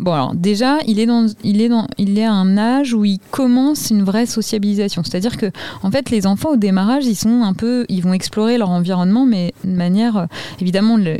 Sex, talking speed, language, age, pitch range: female, 215 wpm, French, 20-39, 185-225 Hz